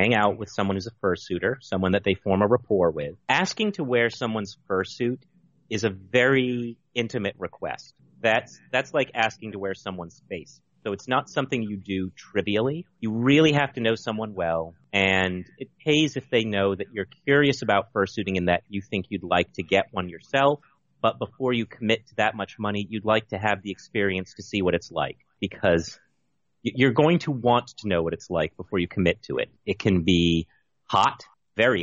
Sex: male